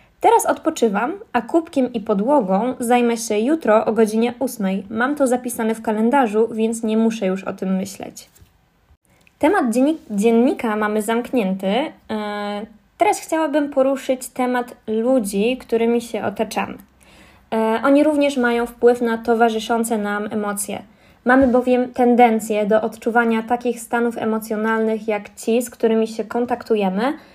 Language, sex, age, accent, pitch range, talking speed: Polish, female, 20-39, native, 215-250 Hz, 125 wpm